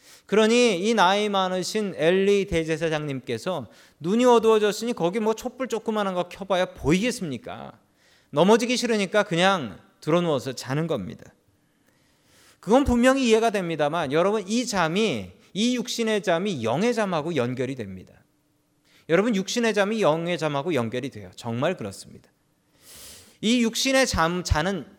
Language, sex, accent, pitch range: Korean, male, native, 155-230 Hz